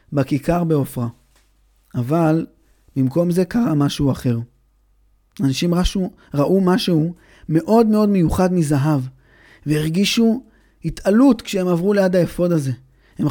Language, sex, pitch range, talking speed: Hebrew, male, 140-210 Hz, 110 wpm